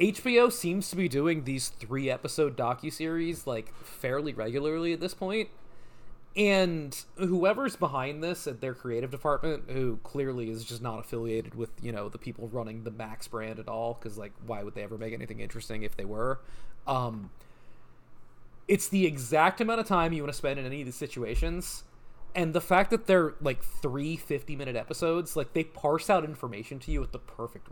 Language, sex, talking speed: English, male, 185 wpm